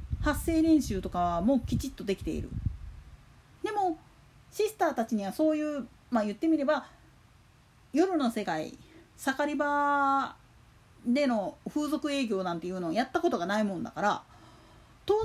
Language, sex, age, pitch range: Japanese, female, 40-59, 225-330 Hz